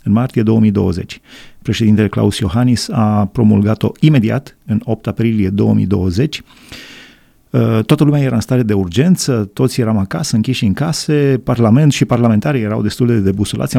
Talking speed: 145 wpm